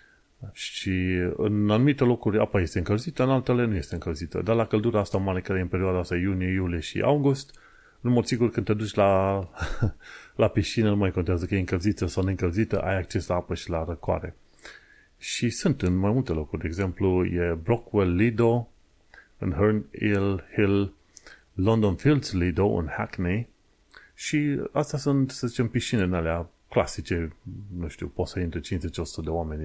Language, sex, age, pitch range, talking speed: Romanian, male, 30-49, 90-115 Hz, 170 wpm